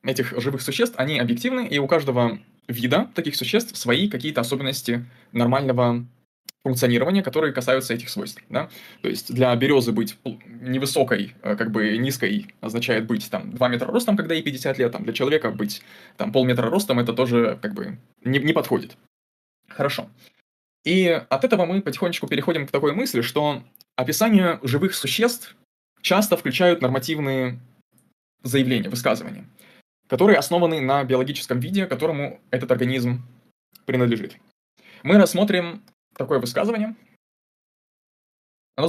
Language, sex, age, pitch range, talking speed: Russian, male, 20-39, 125-170 Hz, 130 wpm